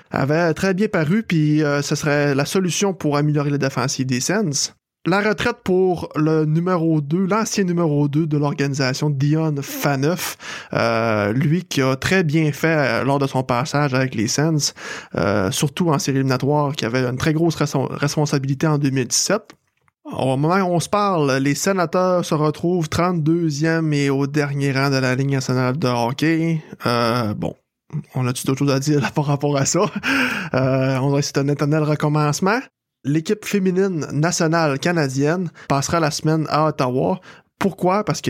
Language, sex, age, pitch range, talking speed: French, male, 20-39, 135-165 Hz, 170 wpm